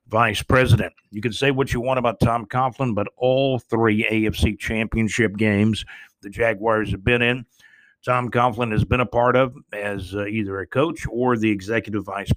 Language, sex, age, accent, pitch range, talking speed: English, male, 50-69, American, 105-130 Hz, 185 wpm